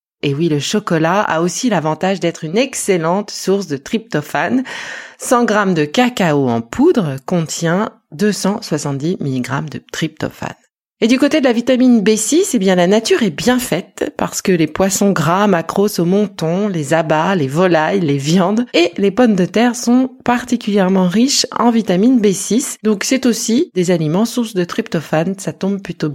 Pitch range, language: 160-220 Hz, French